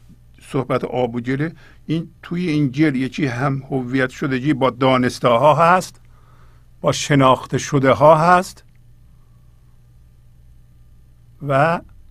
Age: 50-69